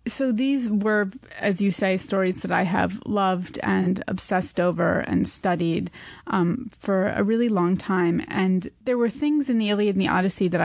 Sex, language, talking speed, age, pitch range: female, English, 185 wpm, 20-39, 185-225 Hz